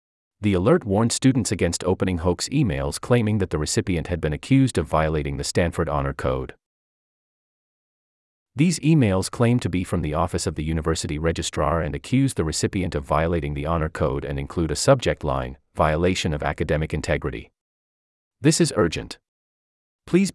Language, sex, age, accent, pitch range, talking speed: English, male, 30-49, American, 75-105 Hz, 160 wpm